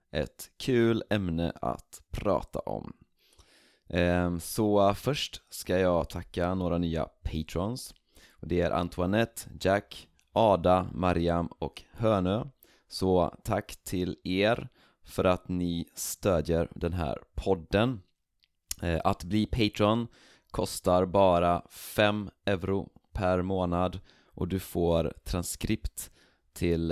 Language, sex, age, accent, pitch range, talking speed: Swedish, male, 30-49, native, 85-100 Hz, 105 wpm